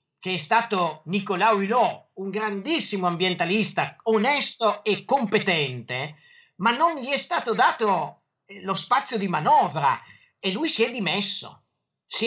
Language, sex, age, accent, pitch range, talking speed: Italian, male, 40-59, native, 175-235 Hz, 130 wpm